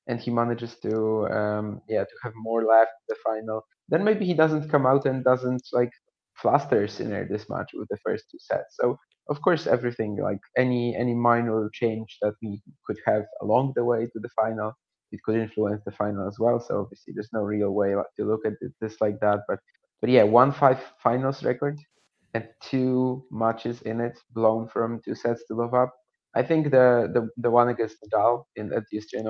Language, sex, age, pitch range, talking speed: English, male, 20-39, 110-125 Hz, 210 wpm